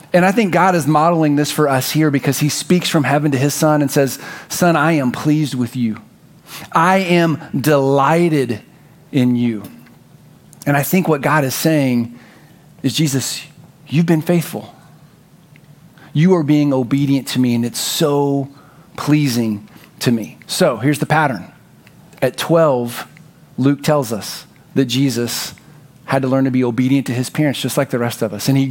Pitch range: 135-160 Hz